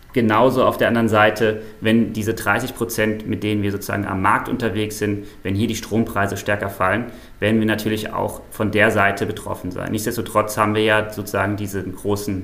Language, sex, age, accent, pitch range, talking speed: German, male, 30-49, German, 105-120 Hz, 190 wpm